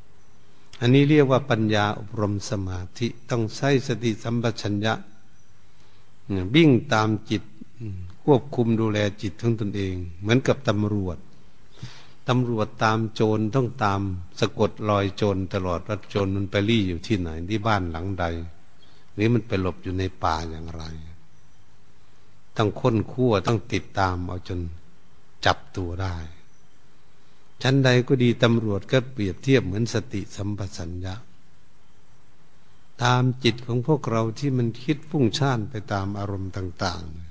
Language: Thai